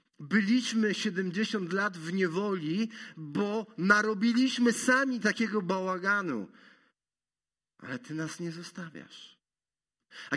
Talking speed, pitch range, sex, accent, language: 95 wpm, 165-230 Hz, male, native, Polish